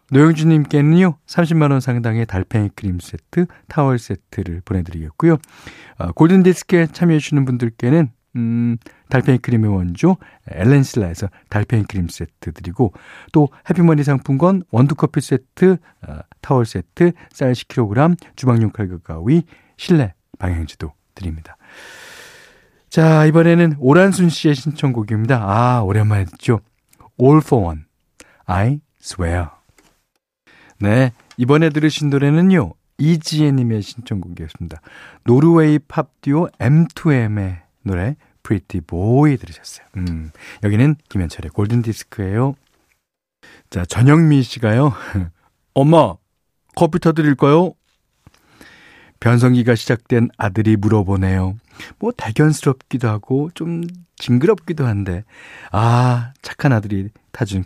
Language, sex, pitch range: Korean, male, 100-150 Hz